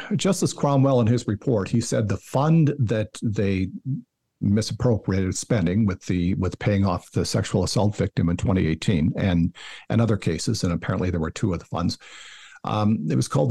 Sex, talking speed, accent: male, 180 wpm, American